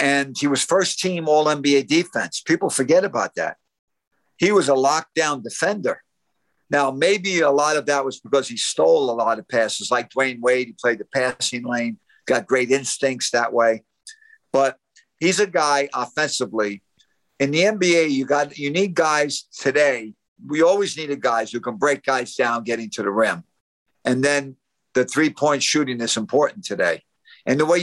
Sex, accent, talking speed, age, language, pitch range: male, American, 175 wpm, 50-69, English, 130-165 Hz